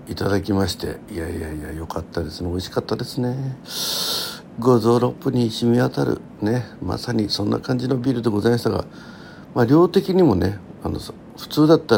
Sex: male